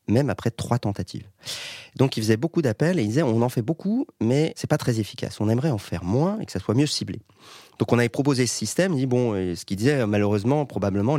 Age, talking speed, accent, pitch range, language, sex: 30-49, 245 wpm, French, 100-145 Hz, French, male